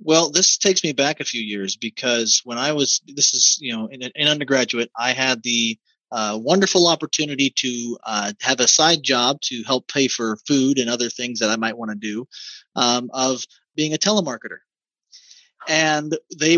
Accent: American